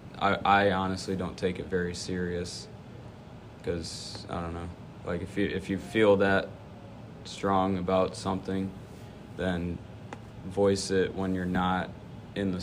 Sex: male